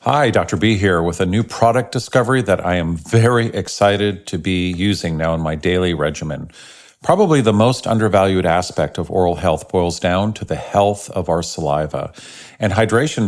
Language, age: English, 50-69